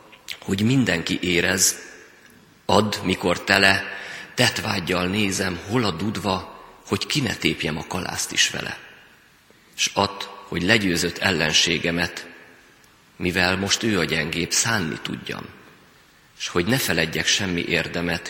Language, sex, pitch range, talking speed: Hungarian, male, 85-100 Hz, 120 wpm